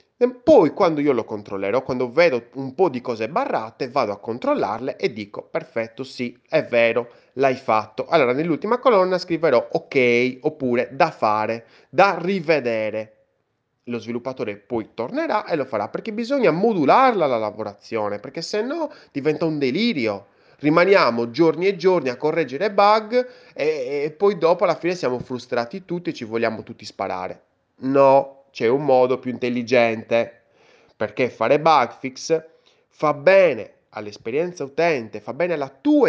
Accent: native